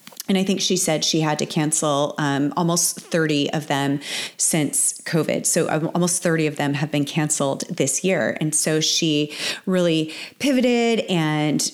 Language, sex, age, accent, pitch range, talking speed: English, female, 30-49, American, 155-185 Hz, 165 wpm